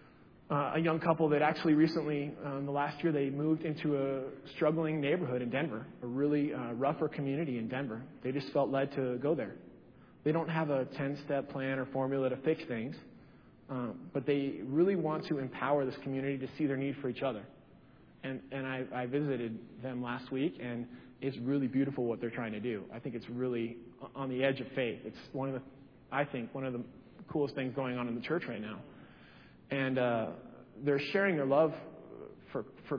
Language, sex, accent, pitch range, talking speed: English, male, American, 130-145 Hz, 205 wpm